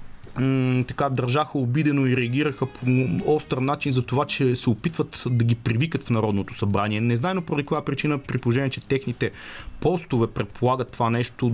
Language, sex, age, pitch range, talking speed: Bulgarian, male, 30-49, 110-145 Hz, 170 wpm